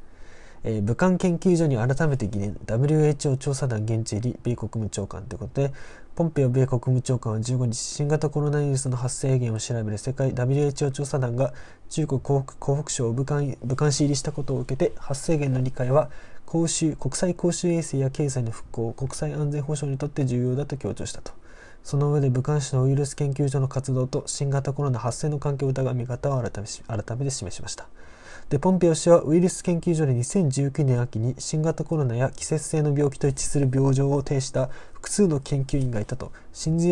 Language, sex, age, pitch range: Japanese, male, 20-39, 120-150 Hz